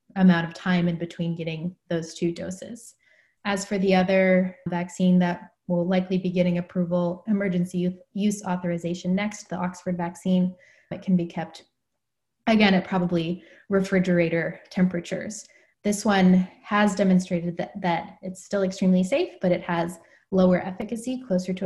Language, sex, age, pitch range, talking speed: English, female, 20-39, 175-190 Hz, 145 wpm